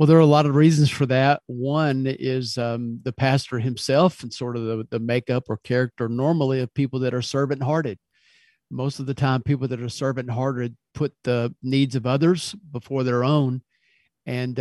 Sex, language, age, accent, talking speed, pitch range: male, English, 50-69, American, 190 wpm, 130-150 Hz